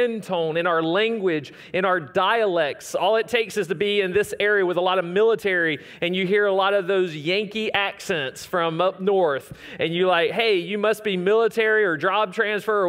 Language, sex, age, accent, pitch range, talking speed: English, male, 30-49, American, 175-210 Hz, 210 wpm